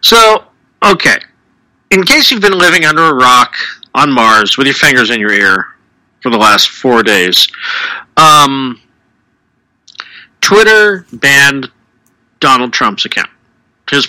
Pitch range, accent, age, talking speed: 125-160 Hz, American, 40-59, 130 wpm